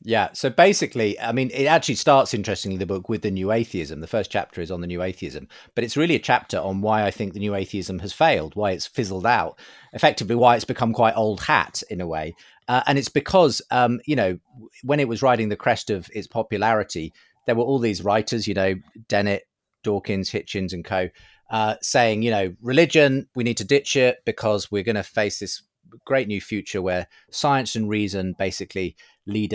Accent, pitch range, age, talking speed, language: British, 100-140 Hz, 30-49, 210 wpm, English